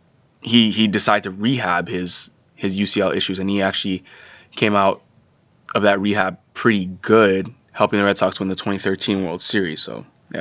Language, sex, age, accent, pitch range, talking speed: English, male, 20-39, American, 95-115 Hz, 175 wpm